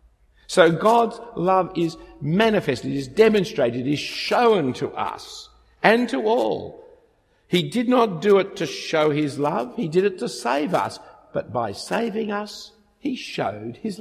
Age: 50-69